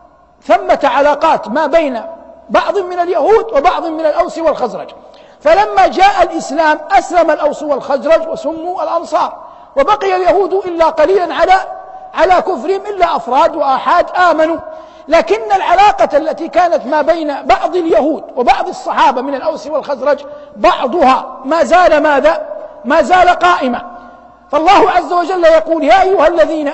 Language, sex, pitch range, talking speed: Arabic, male, 295-355 Hz, 130 wpm